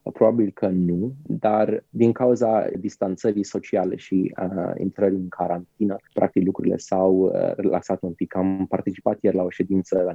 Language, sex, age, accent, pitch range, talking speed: Romanian, male, 20-39, native, 95-125 Hz, 150 wpm